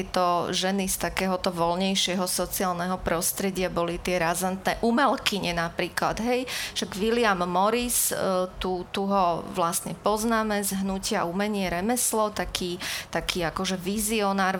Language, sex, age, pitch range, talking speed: Slovak, female, 30-49, 185-215 Hz, 120 wpm